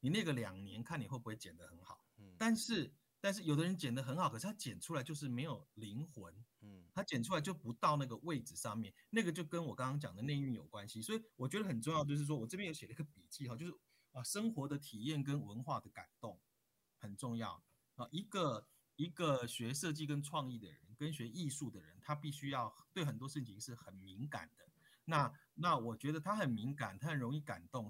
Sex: male